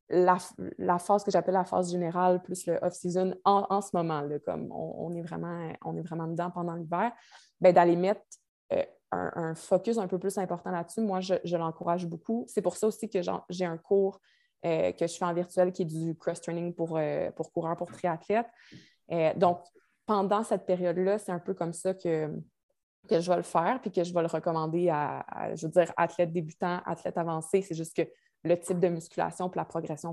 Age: 20-39